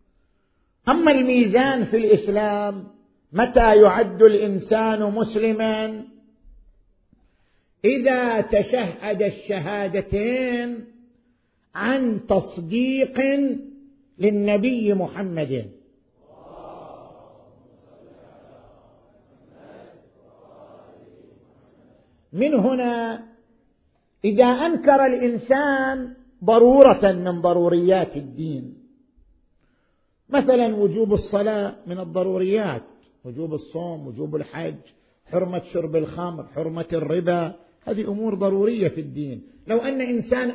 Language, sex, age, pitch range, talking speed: Arabic, male, 50-69, 175-235 Hz, 70 wpm